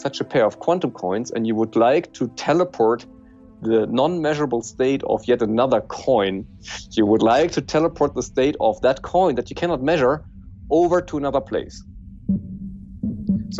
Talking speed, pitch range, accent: 170 wpm, 105-170 Hz, German